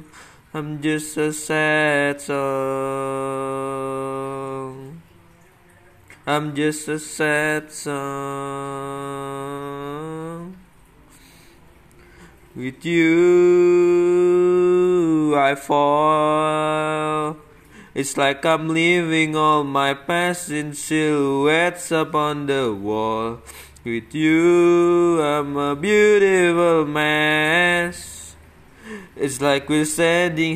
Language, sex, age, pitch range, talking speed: Indonesian, male, 20-39, 140-170 Hz, 70 wpm